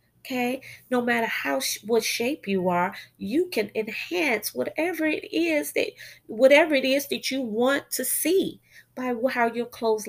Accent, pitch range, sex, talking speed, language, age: American, 175-260 Hz, female, 160 wpm, English, 30-49